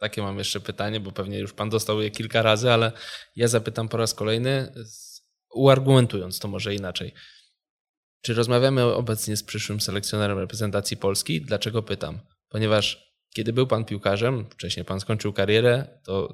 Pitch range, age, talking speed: 105-115 Hz, 10-29, 155 wpm